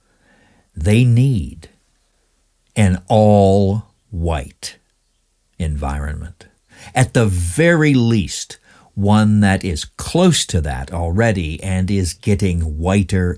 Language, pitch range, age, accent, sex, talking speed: English, 85-110 Hz, 60-79, American, male, 95 wpm